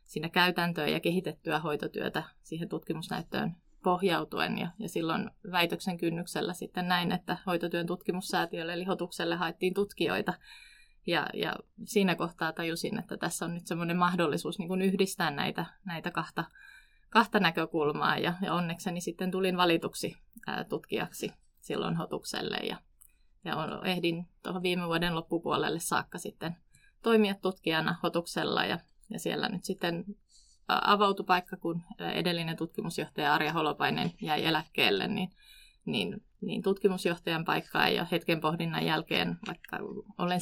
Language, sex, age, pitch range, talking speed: Finnish, female, 20-39, 170-195 Hz, 130 wpm